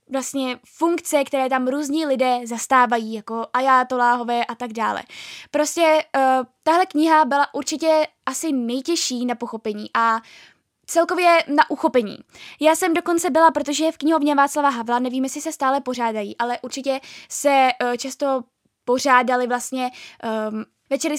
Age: 10-29